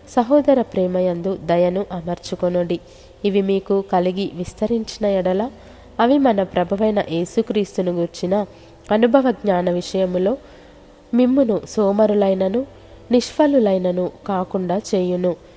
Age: 20-39